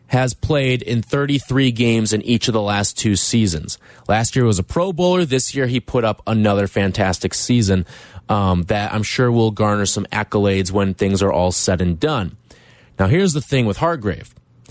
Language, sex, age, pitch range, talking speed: English, male, 20-39, 105-140 Hz, 190 wpm